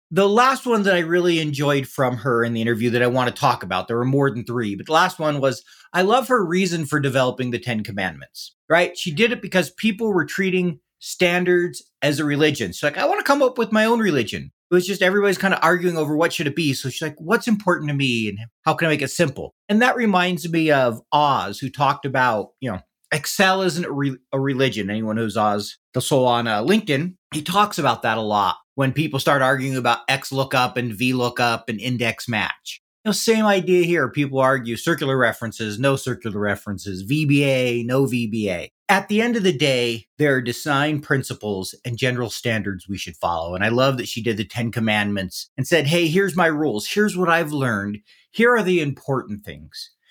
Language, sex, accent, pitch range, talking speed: English, male, American, 120-180 Hz, 220 wpm